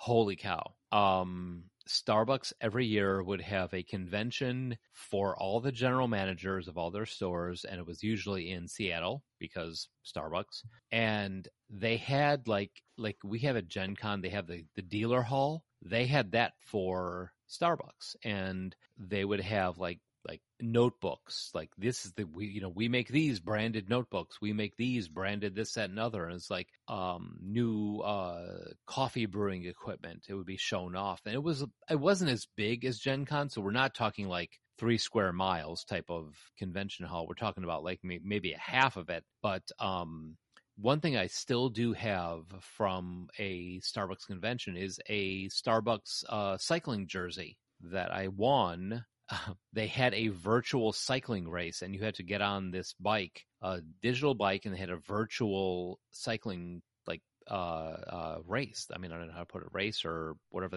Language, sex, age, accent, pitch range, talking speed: English, male, 30-49, American, 95-115 Hz, 180 wpm